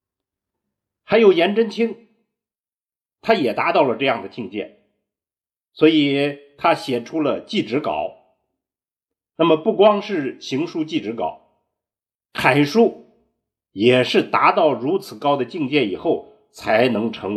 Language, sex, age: Chinese, male, 50-69